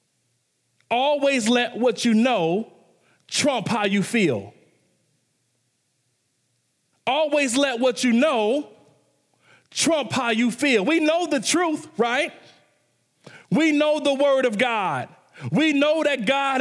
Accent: American